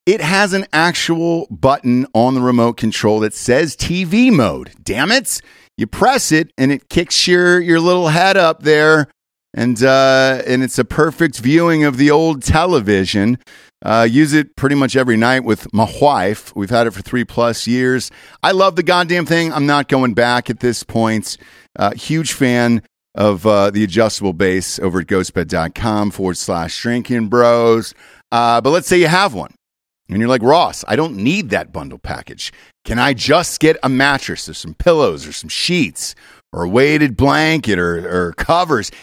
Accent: American